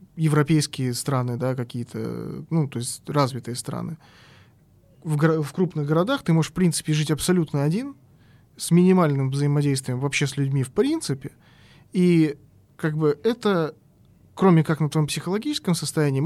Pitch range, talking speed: 130-160 Hz, 145 wpm